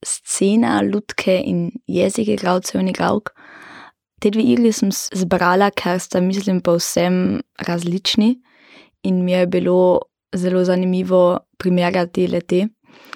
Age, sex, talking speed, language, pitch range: 20-39, female, 105 wpm, German, 180-200 Hz